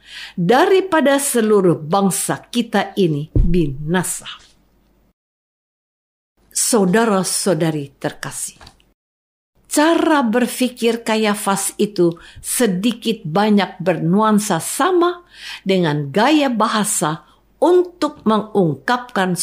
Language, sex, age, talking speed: Indonesian, female, 50-69, 70 wpm